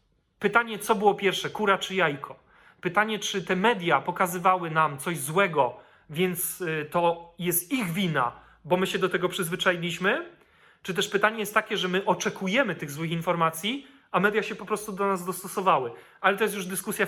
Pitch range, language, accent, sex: 175-210 Hz, Polish, native, male